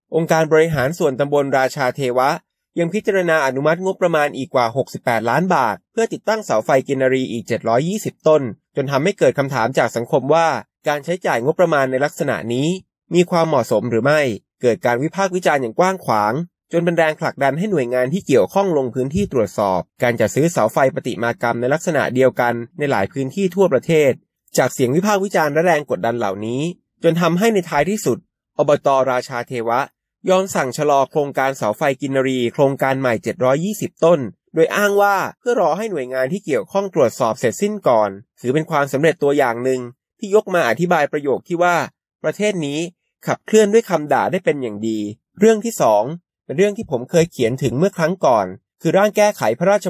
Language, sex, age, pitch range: Thai, male, 20-39, 130-180 Hz